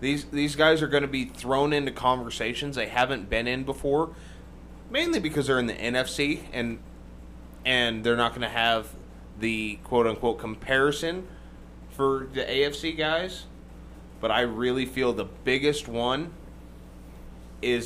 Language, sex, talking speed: English, male, 145 wpm